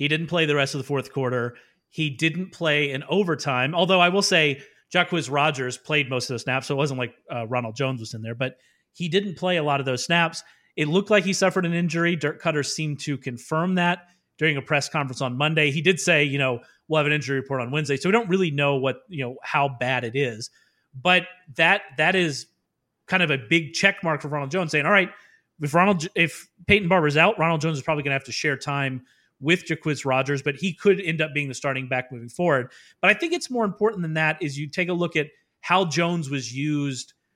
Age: 30-49